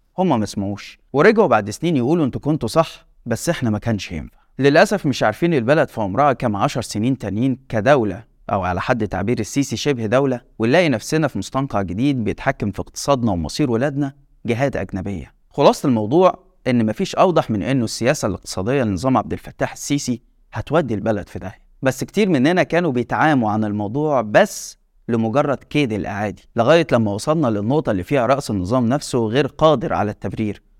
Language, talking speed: Arabic, 170 wpm